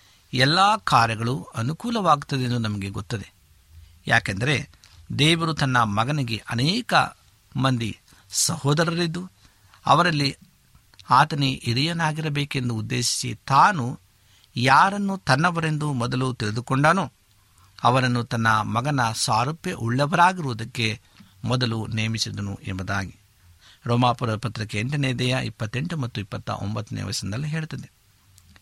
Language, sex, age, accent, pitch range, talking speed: Kannada, male, 50-69, native, 105-145 Hz, 85 wpm